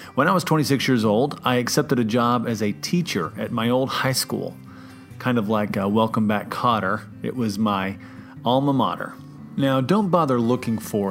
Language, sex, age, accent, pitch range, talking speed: English, male, 30-49, American, 110-140 Hz, 190 wpm